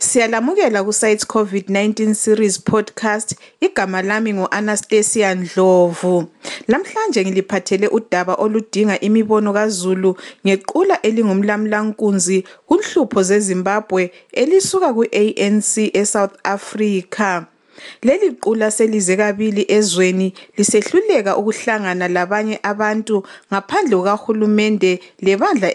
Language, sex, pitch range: English, female, 195-220 Hz